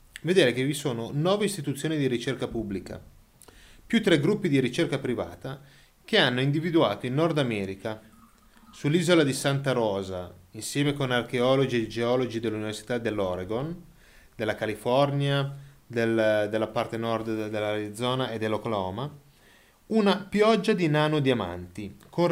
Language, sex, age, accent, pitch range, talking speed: Italian, male, 30-49, native, 110-160 Hz, 125 wpm